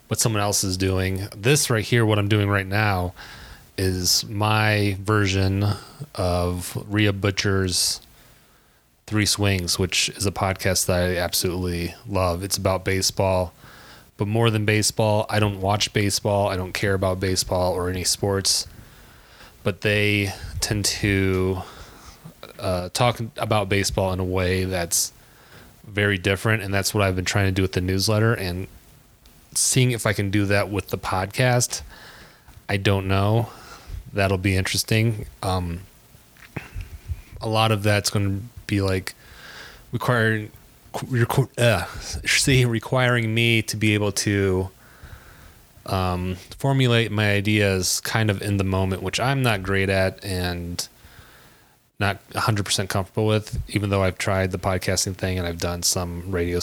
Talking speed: 145 wpm